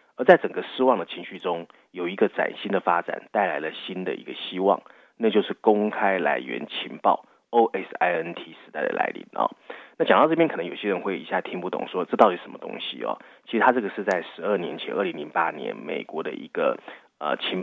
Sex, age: male, 30-49